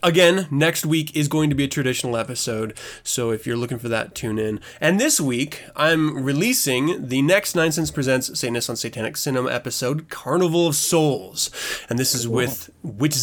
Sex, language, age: male, English, 20-39